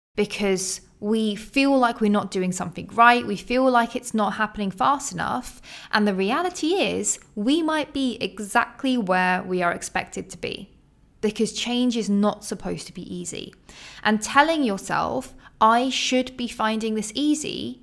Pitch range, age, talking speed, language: 190-250 Hz, 20-39, 160 wpm, English